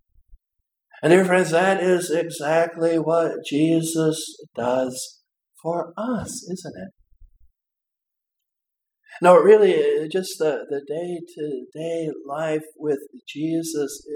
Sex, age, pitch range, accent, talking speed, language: male, 60-79, 155-205 Hz, American, 95 wpm, English